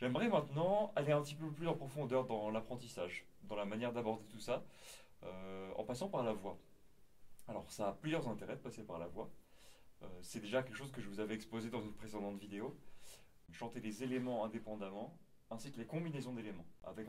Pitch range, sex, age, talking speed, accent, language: 105-130 Hz, male, 30-49, 200 wpm, French, French